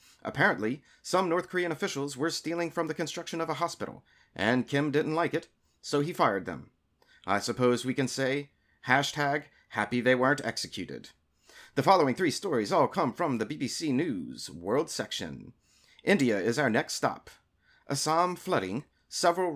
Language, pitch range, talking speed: English, 120-150 Hz, 160 wpm